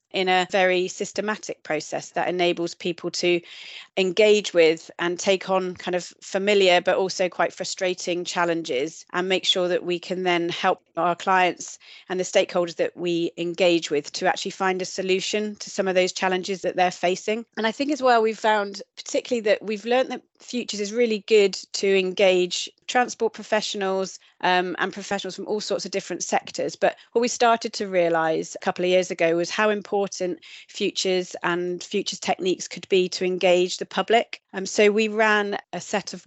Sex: female